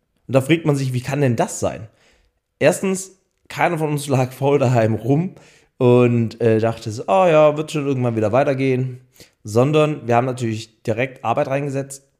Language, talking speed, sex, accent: German, 175 wpm, male, German